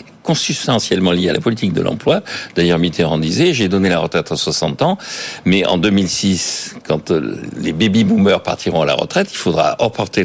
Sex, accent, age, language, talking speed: male, French, 60-79, French, 175 wpm